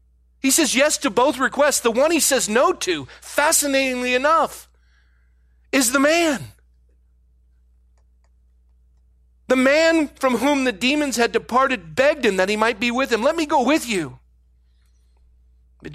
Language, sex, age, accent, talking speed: English, male, 40-59, American, 145 wpm